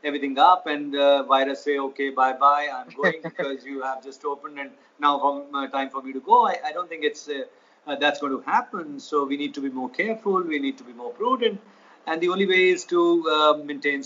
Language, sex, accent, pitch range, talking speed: Hindi, male, native, 140-195 Hz, 250 wpm